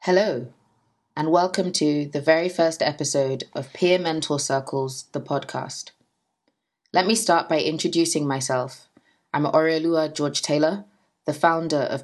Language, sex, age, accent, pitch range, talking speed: English, female, 20-39, British, 140-170 Hz, 130 wpm